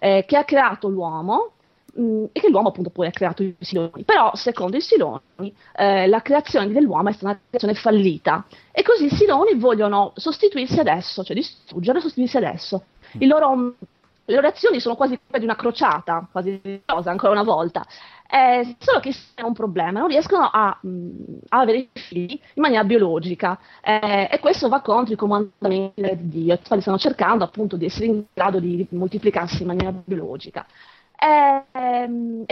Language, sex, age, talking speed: Italian, female, 30-49, 175 wpm